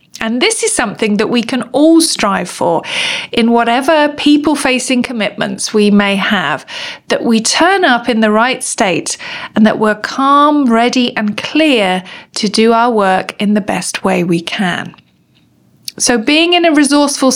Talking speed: 165 wpm